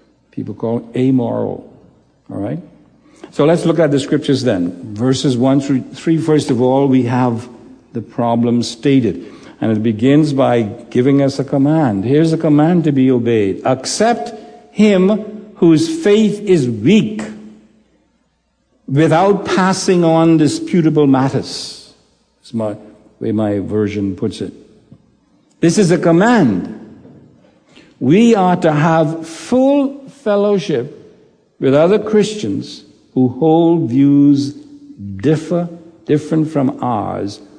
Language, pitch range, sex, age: English, 125-170 Hz, male, 60-79